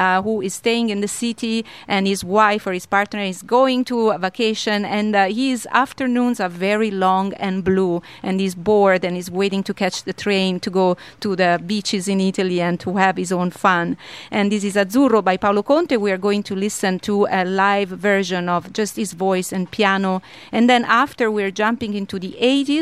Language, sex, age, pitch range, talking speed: English, female, 40-59, 190-225 Hz, 210 wpm